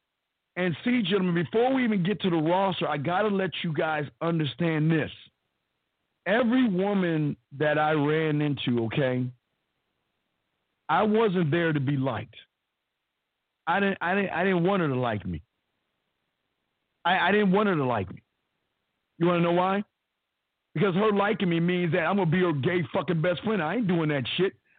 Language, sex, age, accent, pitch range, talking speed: English, male, 50-69, American, 150-210 Hz, 180 wpm